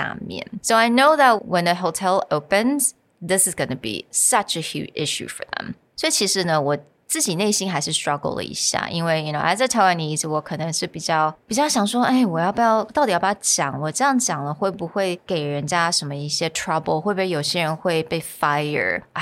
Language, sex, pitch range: Chinese, female, 155-210 Hz